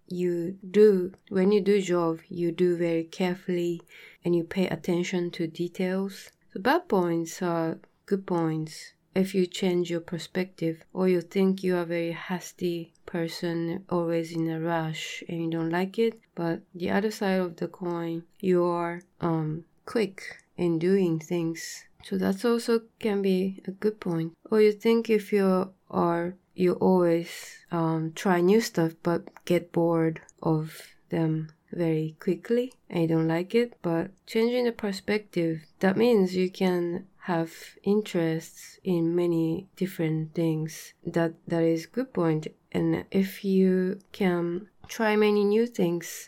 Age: 20-39